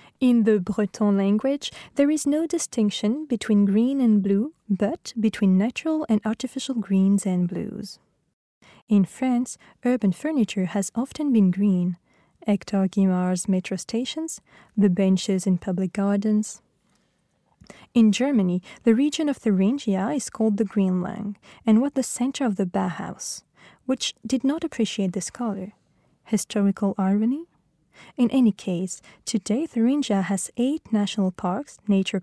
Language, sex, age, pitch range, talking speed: French, female, 20-39, 195-245 Hz, 135 wpm